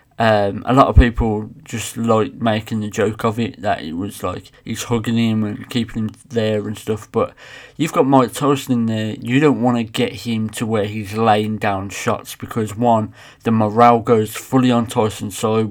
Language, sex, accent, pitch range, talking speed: English, male, British, 110-120 Hz, 205 wpm